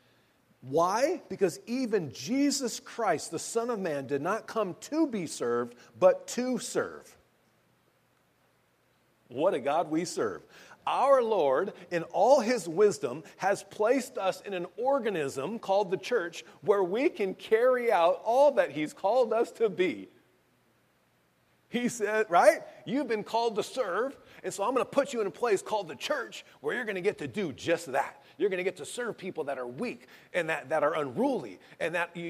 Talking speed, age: 180 wpm, 40-59